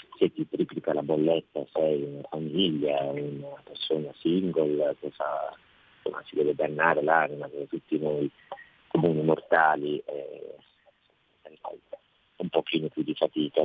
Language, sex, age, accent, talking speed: Italian, male, 40-59, native, 130 wpm